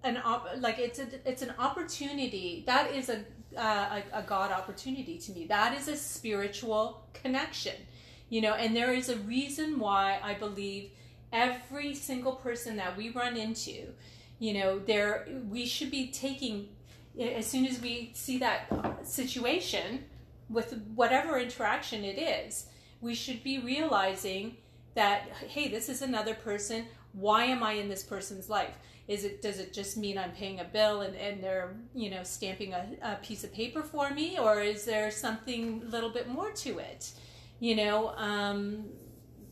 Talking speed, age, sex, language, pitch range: 170 wpm, 30-49, female, English, 205-255 Hz